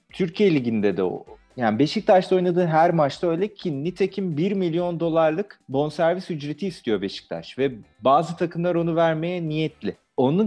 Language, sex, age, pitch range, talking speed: Turkish, male, 40-59, 140-190 Hz, 150 wpm